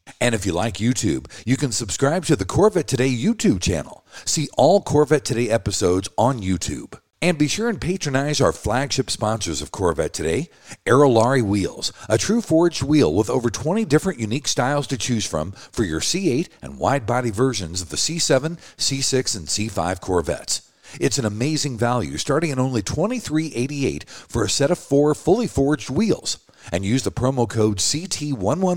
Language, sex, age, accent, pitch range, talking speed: English, male, 50-69, American, 105-150 Hz, 180 wpm